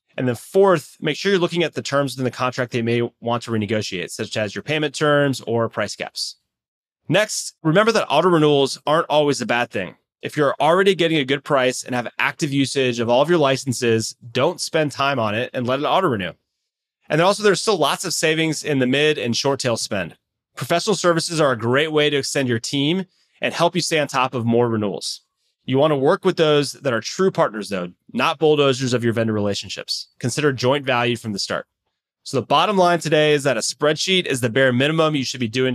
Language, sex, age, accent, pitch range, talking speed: English, male, 30-49, American, 120-165 Hz, 230 wpm